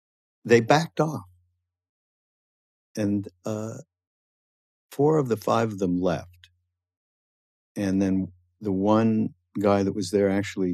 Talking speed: 115 wpm